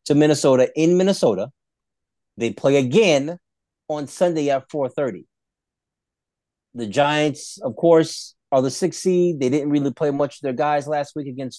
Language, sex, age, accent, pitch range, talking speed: English, male, 30-49, American, 125-165 Hz, 155 wpm